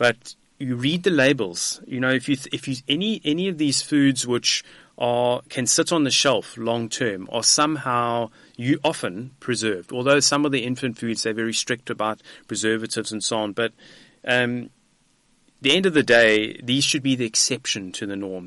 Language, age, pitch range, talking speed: English, 30-49, 110-130 Hz, 200 wpm